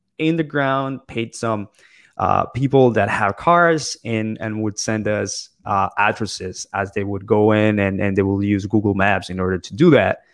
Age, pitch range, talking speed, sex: 20-39, 100-115 Hz, 195 wpm, male